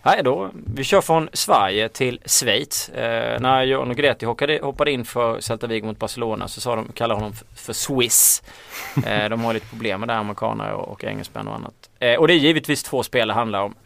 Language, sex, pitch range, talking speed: Swedish, male, 110-130 Hz, 215 wpm